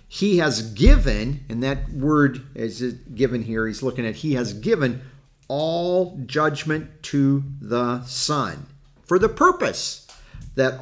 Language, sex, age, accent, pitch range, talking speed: English, male, 50-69, American, 125-155 Hz, 135 wpm